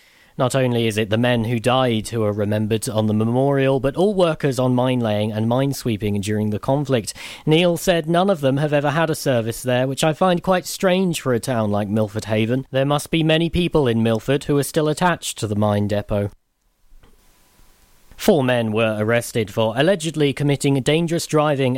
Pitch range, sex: 110-145 Hz, male